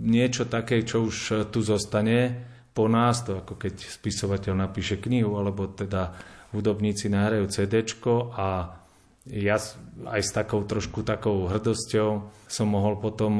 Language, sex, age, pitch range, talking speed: Slovak, male, 30-49, 100-110 Hz, 135 wpm